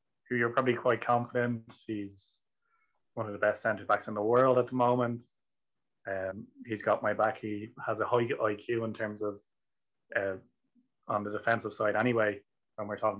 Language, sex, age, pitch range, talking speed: English, male, 20-39, 110-120 Hz, 175 wpm